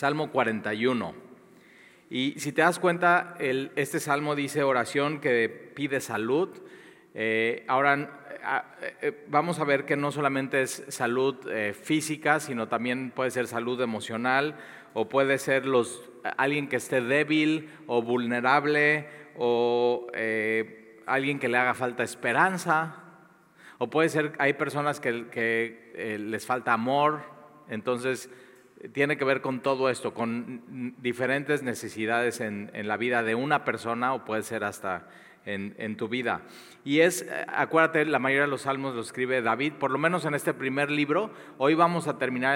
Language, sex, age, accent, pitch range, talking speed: Spanish, male, 40-59, Mexican, 120-150 Hz, 155 wpm